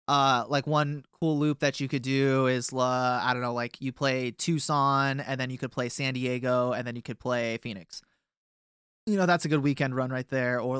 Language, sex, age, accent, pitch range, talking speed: English, male, 20-39, American, 125-155 Hz, 230 wpm